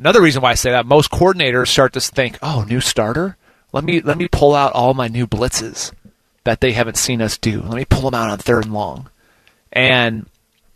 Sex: male